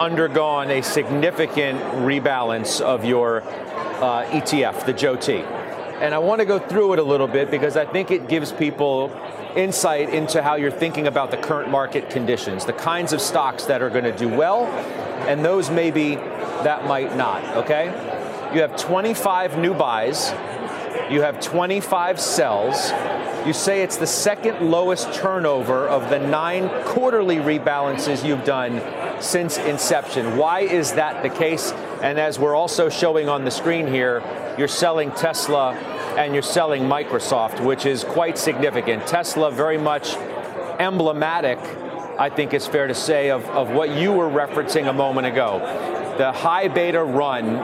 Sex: male